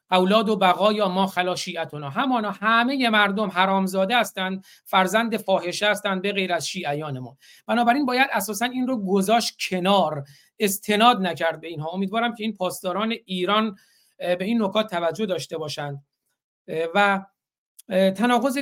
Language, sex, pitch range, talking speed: Persian, male, 180-220 Hz, 150 wpm